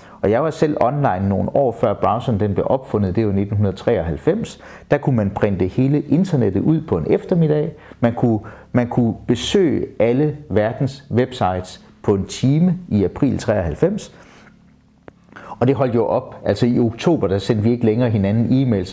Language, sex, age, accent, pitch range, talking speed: Danish, male, 30-49, native, 100-130 Hz, 170 wpm